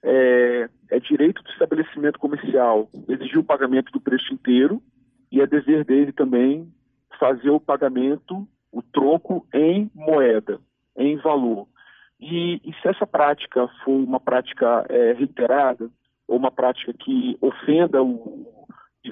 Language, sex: Portuguese, male